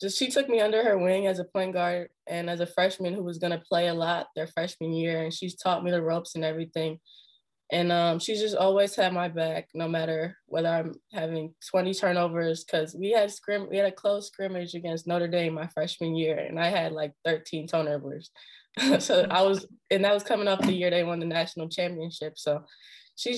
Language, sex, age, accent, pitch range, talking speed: English, female, 20-39, American, 165-190 Hz, 215 wpm